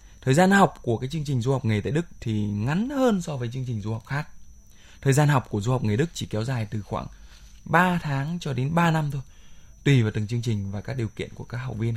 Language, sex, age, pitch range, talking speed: Vietnamese, male, 20-39, 110-165 Hz, 275 wpm